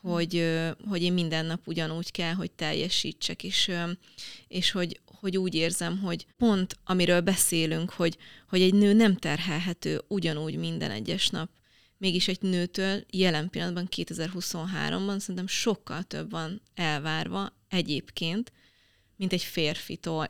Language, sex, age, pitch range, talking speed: Hungarian, female, 30-49, 165-195 Hz, 130 wpm